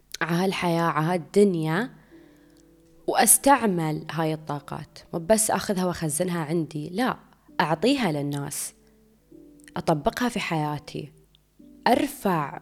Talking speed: 90 wpm